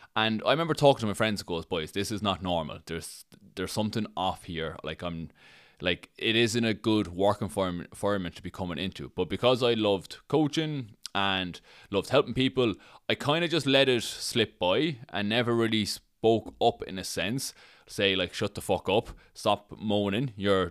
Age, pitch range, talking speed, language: 20-39, 100-135 Hz, 195 wpm, English